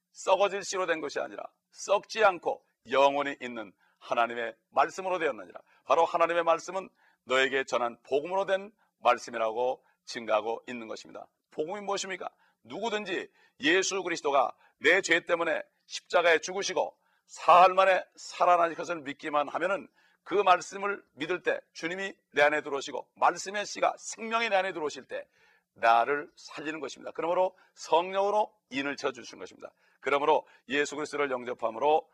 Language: Korean